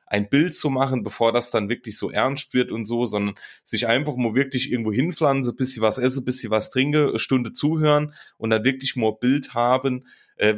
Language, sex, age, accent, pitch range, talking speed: German, male, 30-49, German, 115-145 Hz, 215 wpm